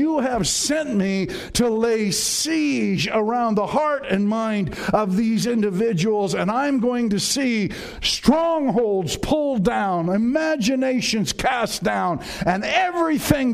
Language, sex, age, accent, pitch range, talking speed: English, male, 50-69, American, 180-245 Hz, 125 wpm